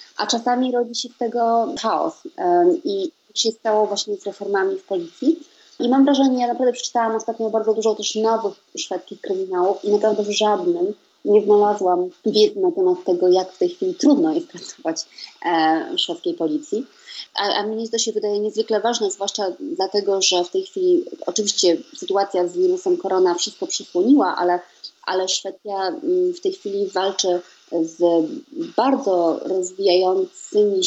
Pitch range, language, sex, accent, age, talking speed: 185-305 Hz, Polish, female, native, 30-49, 155 wpm